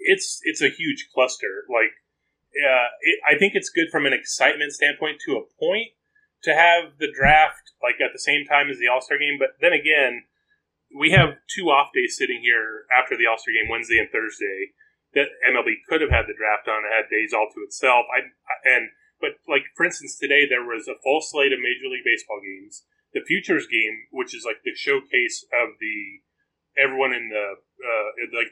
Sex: male